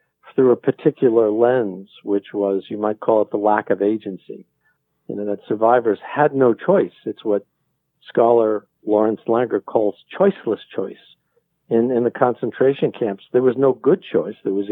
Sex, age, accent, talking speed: male, 50-69, American, 165 wpm